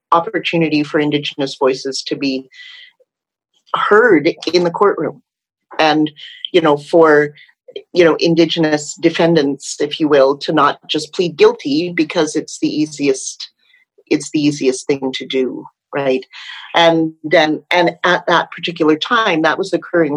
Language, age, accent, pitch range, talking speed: English, 40-59, American, 145-245 Hz, 140 wpm